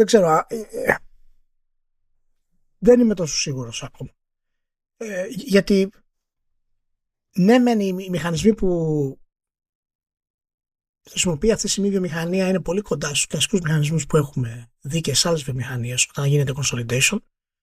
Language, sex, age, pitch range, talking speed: Greek, male, 20-39, 140-195 Hz, 115 wpm